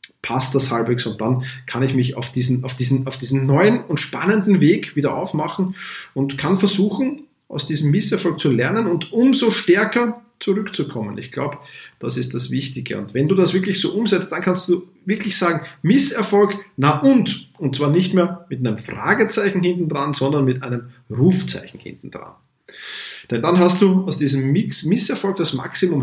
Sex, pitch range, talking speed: male, 135-190 Hz, 180 wpm